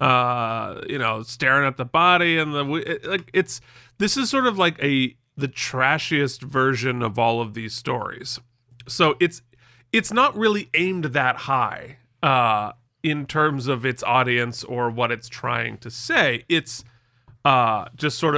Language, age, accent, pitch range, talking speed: English, 30-49, American, 120-170 Hz, 160 wpm